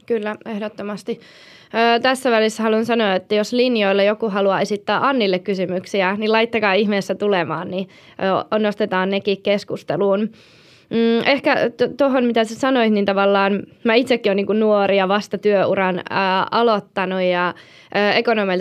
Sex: female